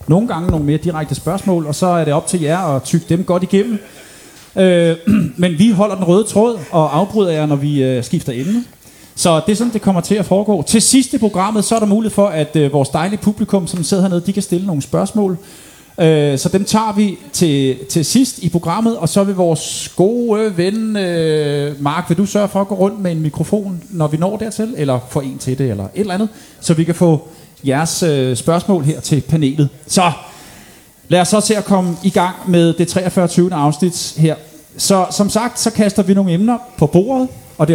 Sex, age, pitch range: male, 30-49, 150-200 Hz